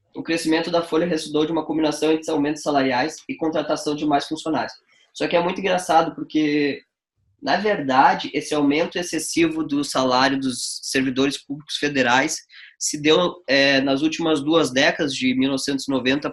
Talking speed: 155 wpm